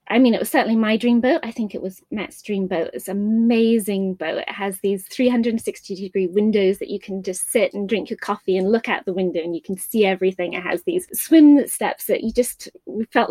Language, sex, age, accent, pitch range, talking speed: English, female, 20-39, British, 190-230 Hz, 235 wpm